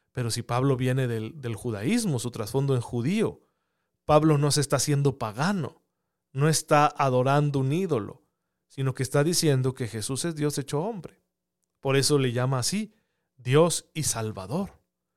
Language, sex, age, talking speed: Spanish, male, 40-59, 160 wpm